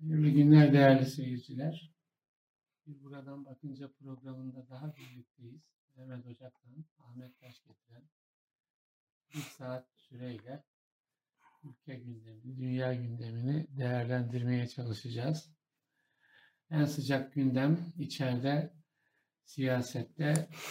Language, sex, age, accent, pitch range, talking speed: Turkish, male, 60-79, native, 125-145 Hz, 80 wpm